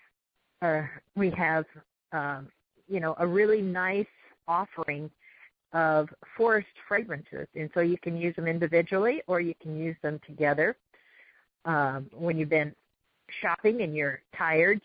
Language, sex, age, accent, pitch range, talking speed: English, female, 50-69, American, 150-175 Hz, 135 wpm